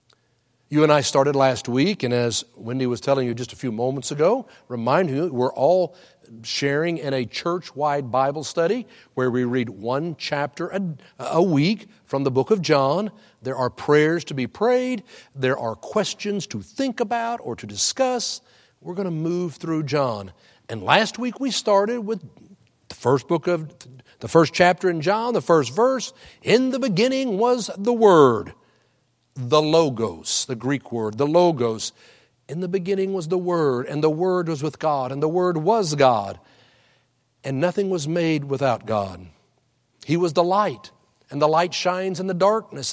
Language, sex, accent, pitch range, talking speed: English, male, American, 130-185 Hz, 175 wpm